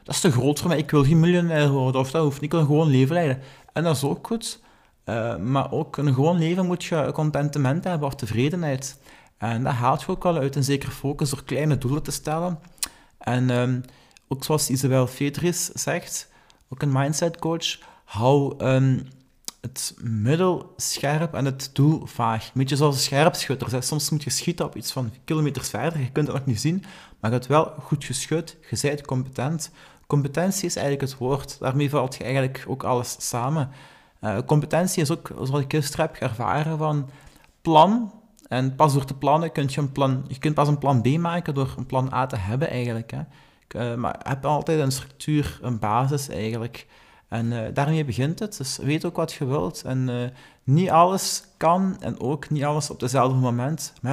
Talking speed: 205 wpm